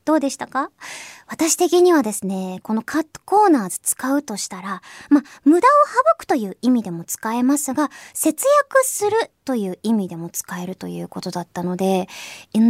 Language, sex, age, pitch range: Japanese, male, 20-39, 205-310 Hz